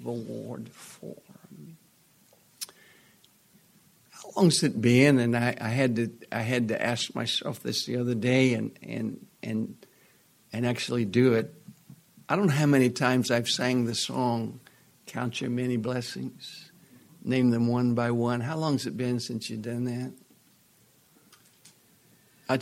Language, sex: English, male